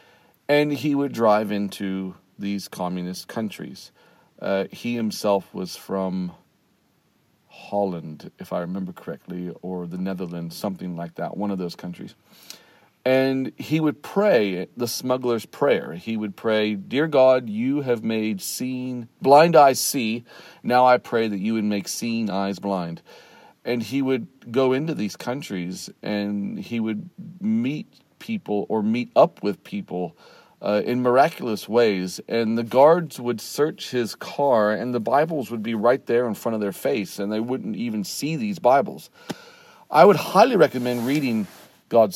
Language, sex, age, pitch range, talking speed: English, male, 40-59, 105-135 Hz, 155 wpm